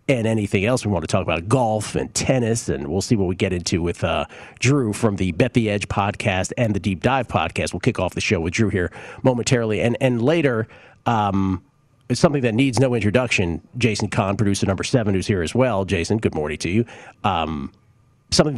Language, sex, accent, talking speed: English, male, American, 215 wpm